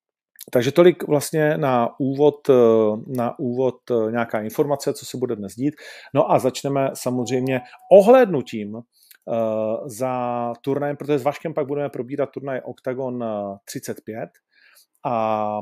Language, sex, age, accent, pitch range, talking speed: Czech, male, 40-59, native, 110-140 Hz, 125 wpm